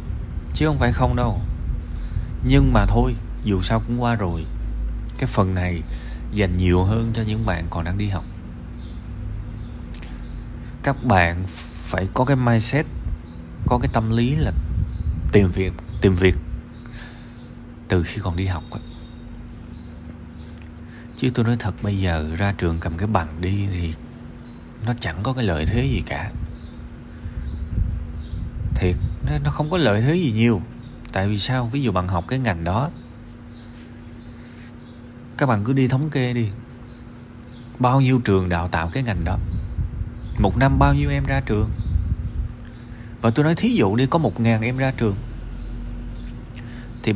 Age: 20-39